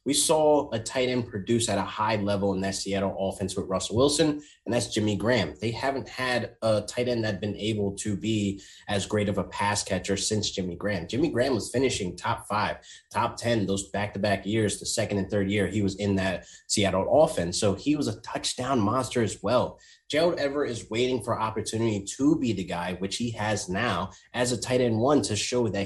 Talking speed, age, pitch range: 220 wpm, 20-39, 100-125 Hz